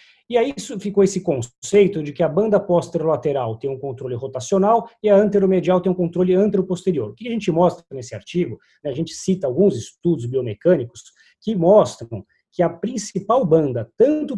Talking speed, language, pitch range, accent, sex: 175 wpm, Portuguese, 155-200 Hz, Brazilian, male